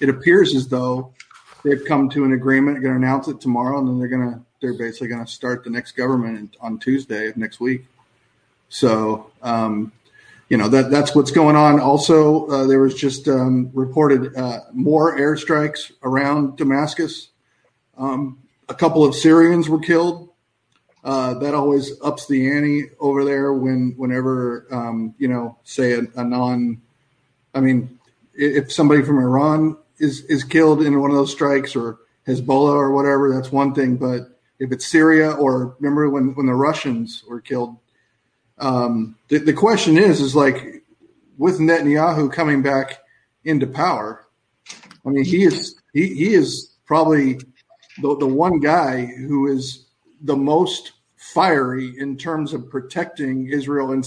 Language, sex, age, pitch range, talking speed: English, male, 40-59, 125-150 Hz, 160 wpm